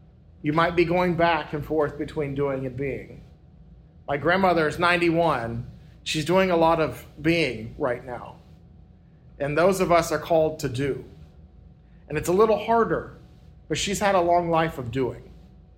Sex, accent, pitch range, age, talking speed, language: male, American, 140-180 Hz, 40-59, 165 wpm, English